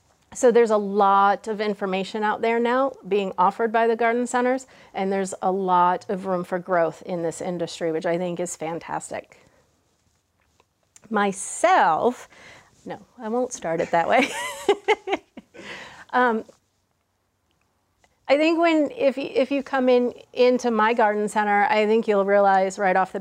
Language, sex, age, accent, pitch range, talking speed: English, female, 40-59, American, 185-235 Hz, 155 wpm